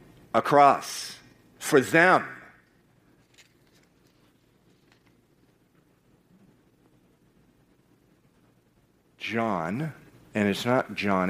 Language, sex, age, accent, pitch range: English, male, 50-69, American, 100-140 Hz